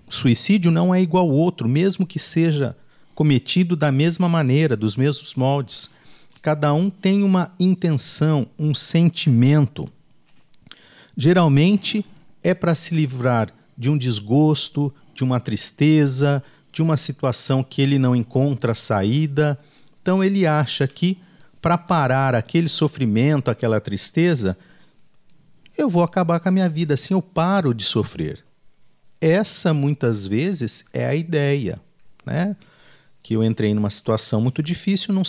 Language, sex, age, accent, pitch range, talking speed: Portuguese, male, 50-69, Brazilian, 125-170 Hz, 135 wpm